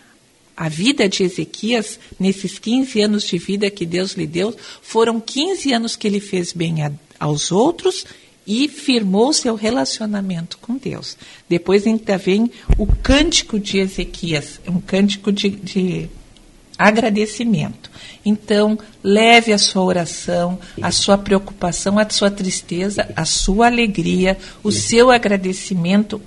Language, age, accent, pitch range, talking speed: Portuguese, 50-69, Brazilian, 170-215 Hz, 130 wpm